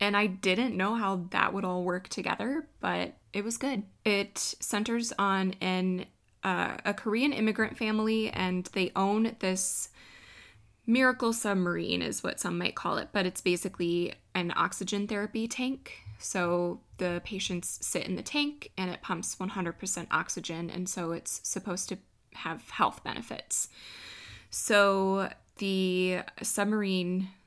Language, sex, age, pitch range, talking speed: English, female, 20-39, 175-215 Hz, 140 wpm